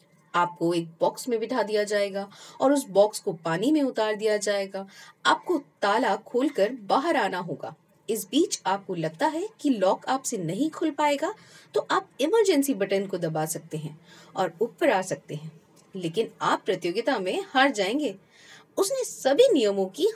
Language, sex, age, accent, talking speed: Hindi, female, 30-49, native, 165 wpm